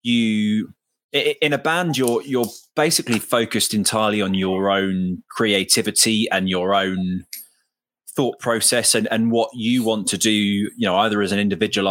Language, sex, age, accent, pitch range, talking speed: English, male, 20-39, British, 100-120 Hz, 155 wpm